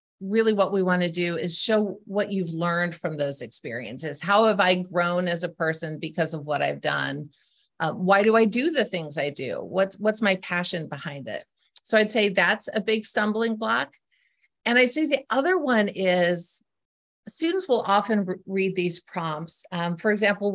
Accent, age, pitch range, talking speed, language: American, 40-59, 175-225 Hz, 190 wpm, English